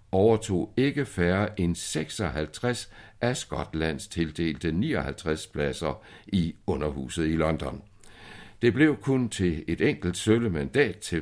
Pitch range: 80-105 Hz